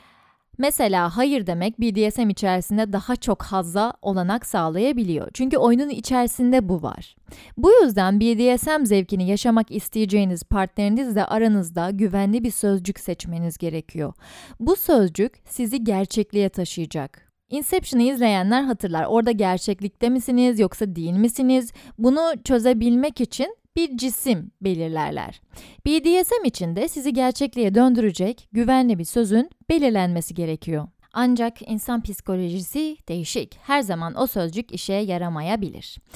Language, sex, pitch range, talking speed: Turkish, female, 190-255 Hz, 115 wpm